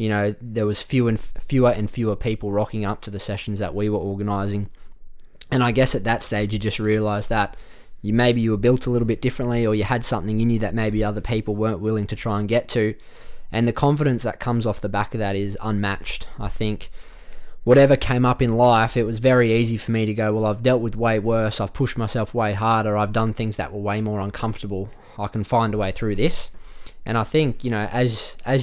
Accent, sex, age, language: Australian, male, 20-39, English